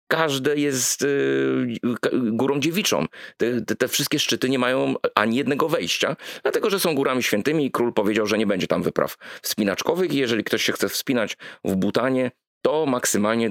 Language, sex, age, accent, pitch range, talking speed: Polish, male, 30-49, native, 95-120 Hz, 175 wpm